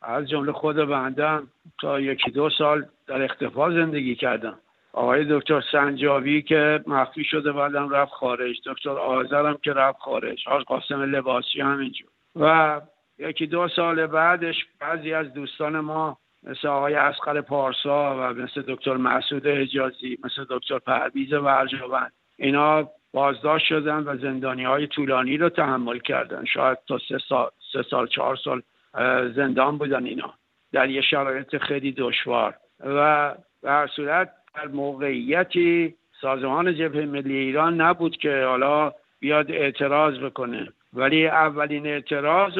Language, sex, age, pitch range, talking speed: Persian, male, 50-69, 135-155 Hz, 130 wpm